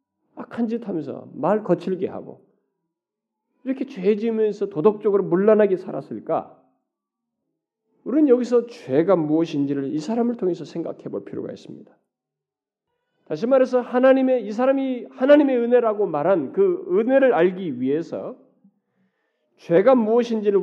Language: Korean